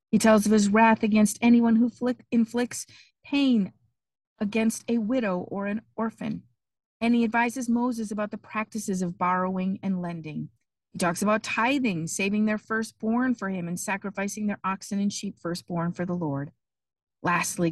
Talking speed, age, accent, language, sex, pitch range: 160 wpm, 40-59, American, English, female, 175-220 Hz